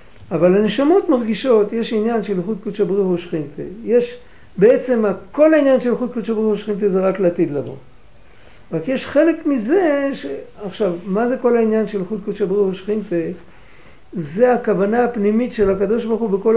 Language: Hebrew